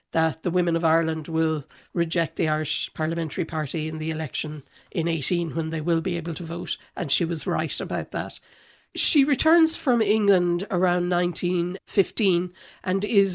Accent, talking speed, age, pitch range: Irish, 165 wpm, 60-79, 165-195 Hz